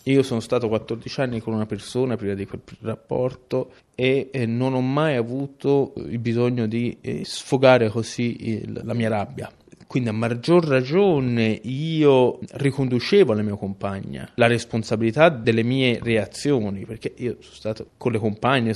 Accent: native